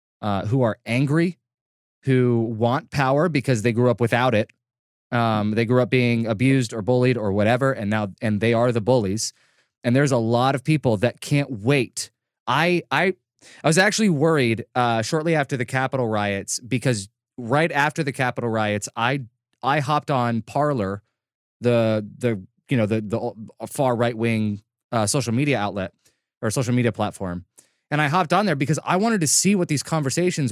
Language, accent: English, American